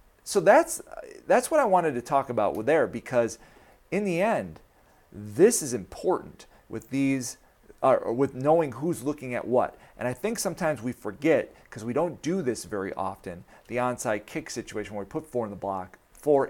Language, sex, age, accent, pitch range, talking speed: English, male, 40-59, American, 115-155 Hz, 185 wpm